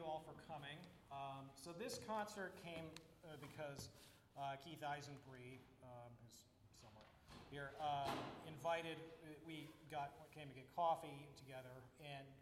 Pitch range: 125-150 Hz